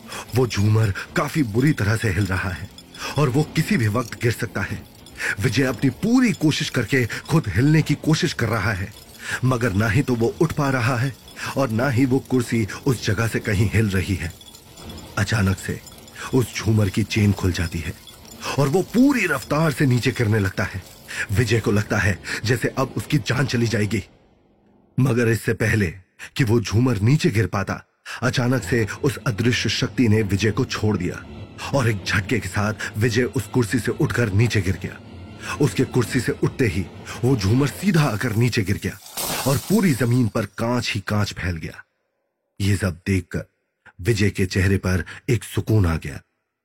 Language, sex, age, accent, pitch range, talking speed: Hindi, male, 30-49, native, 100-130 Hz, 180 wpm